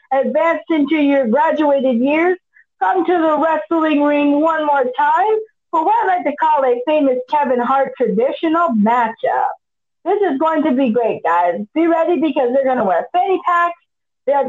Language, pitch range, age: English, 250-330 Hz, 40-59